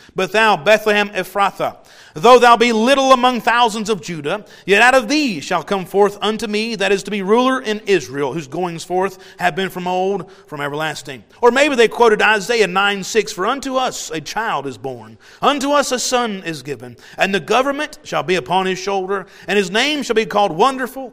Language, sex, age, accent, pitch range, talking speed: English, male, 40-59, American, 185-235 Hz, 205 wpm